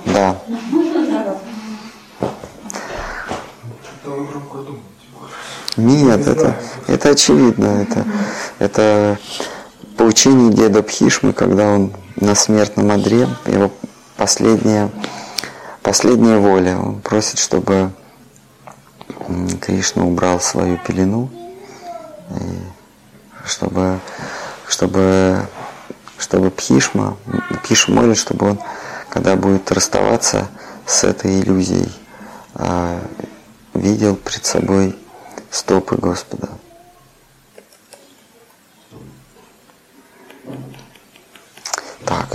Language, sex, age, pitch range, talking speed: Russian, male, 30-49, 95-115 Hz, 65 wpm